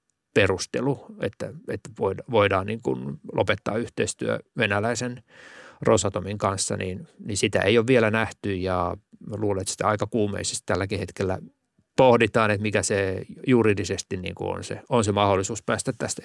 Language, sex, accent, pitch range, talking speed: Finnish, male, native, 100-120 Hz, 150 wpm